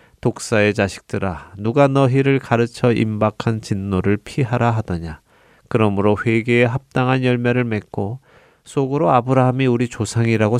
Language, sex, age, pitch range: Korean, male, 30-49, 95-125 Hz